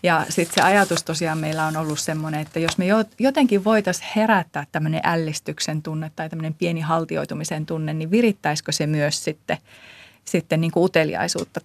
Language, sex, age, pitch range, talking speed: Finnish, female, 30-49, 160-200 Hz, 160 wpm